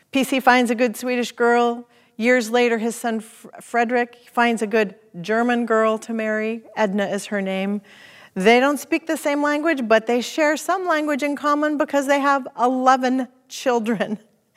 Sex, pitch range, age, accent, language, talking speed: female, 195-240 Hz, 40-59, American, English, 165 wpm